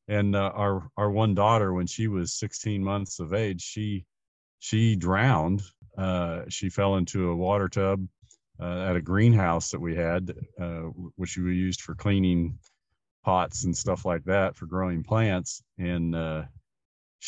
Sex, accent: male, American